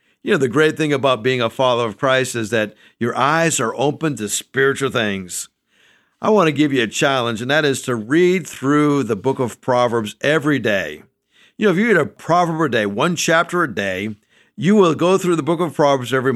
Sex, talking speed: male, 225 wpm